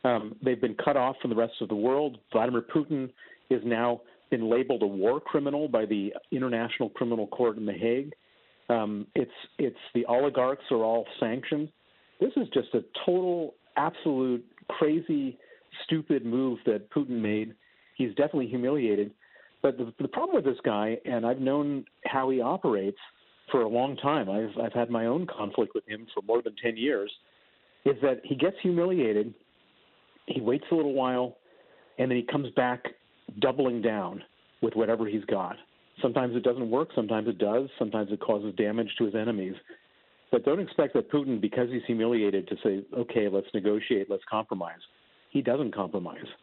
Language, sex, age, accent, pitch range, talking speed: English, male, 50-69, American, 110-130 Hz, 175 wpm